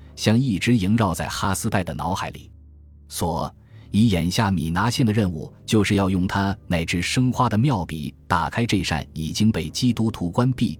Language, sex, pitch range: Chinese, male, 85-115 Hz